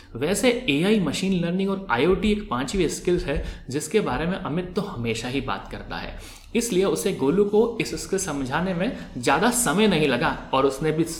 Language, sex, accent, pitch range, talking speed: Hindi, male, native, 130-200 Hz, 195 wpm